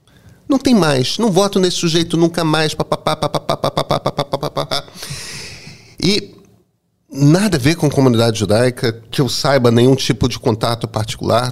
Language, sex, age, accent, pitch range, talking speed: Portuguese, male, 40-59, Brazilian, 115-160 Hz, 150 wpm